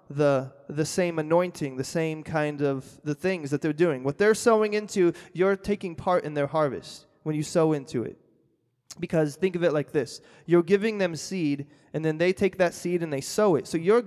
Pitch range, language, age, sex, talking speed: 150-180 Hz, English, 20-39, male, 215 wpm